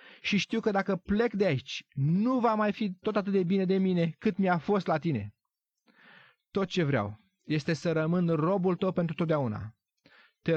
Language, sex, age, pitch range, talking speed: Romanian, male, 30-49, 120-175 Hz, 185 wpm